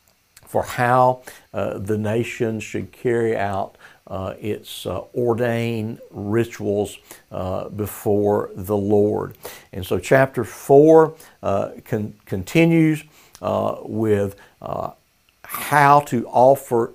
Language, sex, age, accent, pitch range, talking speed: English, male, 60-79, American, 105-130 Hz, 105 wpm